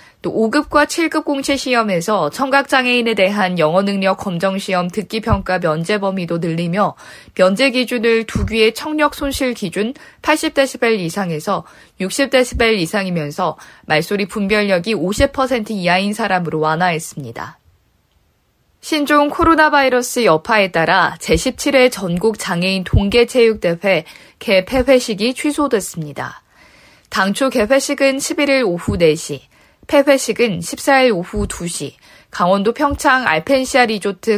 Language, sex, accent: Korean, female, native